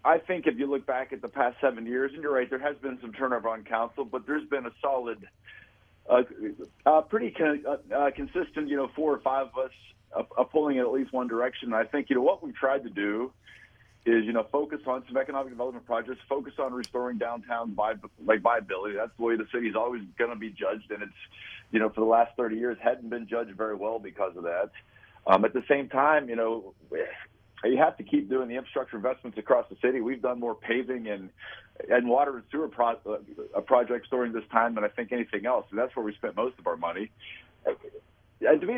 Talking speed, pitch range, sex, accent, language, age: 230 wpm, 110-135 Hz, male, American, English, 40-59